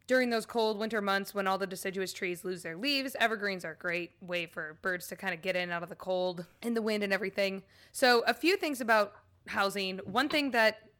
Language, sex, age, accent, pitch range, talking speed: English, female, 20-39, American, 180-225 Hz, 235 wpm